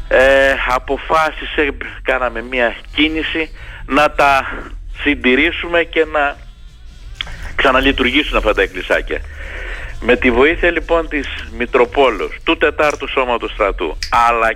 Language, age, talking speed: Greek, 50-69, 100 wpm